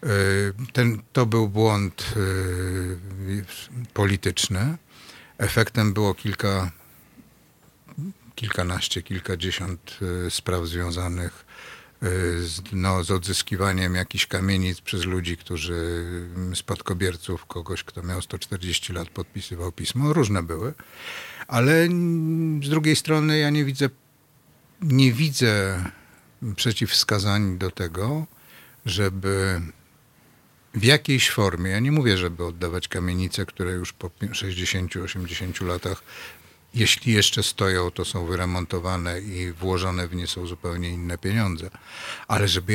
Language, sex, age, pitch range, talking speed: Polish, male, 50-69, 90-115 Hz, 105 wpm